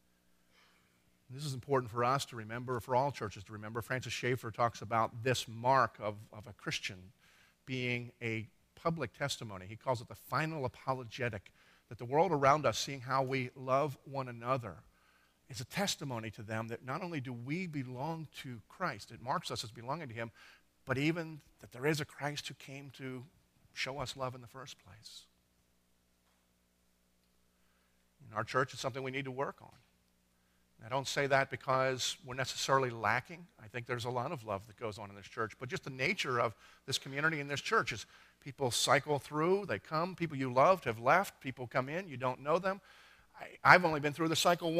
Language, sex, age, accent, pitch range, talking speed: English, male, 50-69, American, 110-145 Hz, 195 wpm